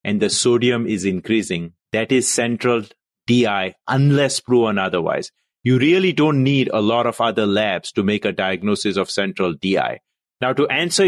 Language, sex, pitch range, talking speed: English, male, 105-130 Hz, 170 wpm